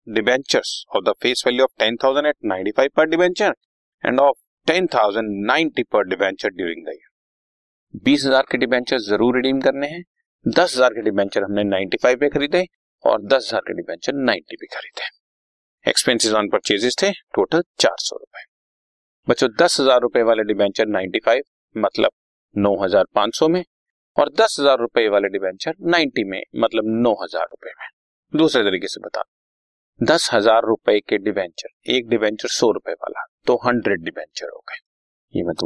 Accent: native